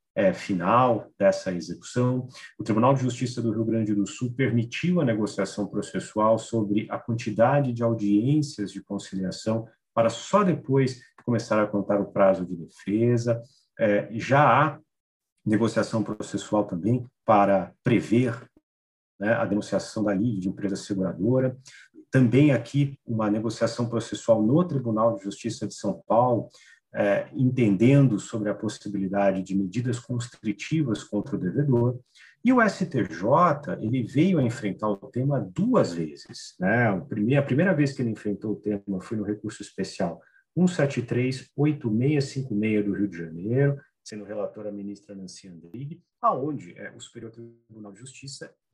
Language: Portuguese